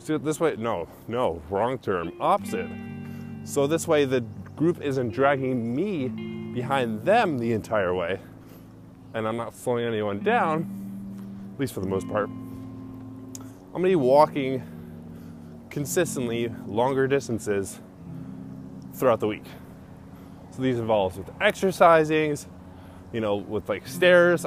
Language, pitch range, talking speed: English, 95-135 Hz, 130 wpm